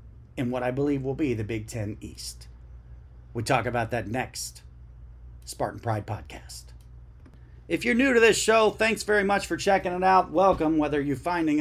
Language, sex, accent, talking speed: English, male, American, 180 wpm